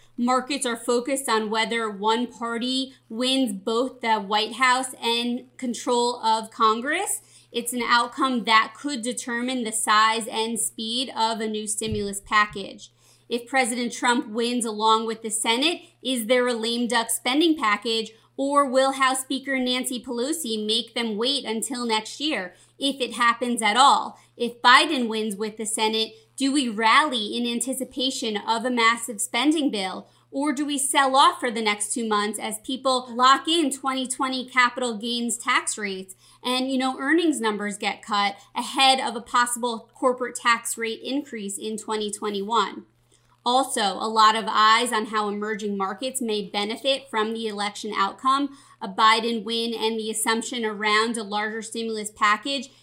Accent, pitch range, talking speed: American, 220-260 Hz, 160 wpm